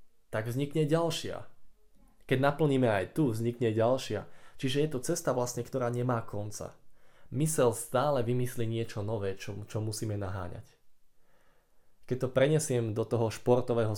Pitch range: 100-125 Hz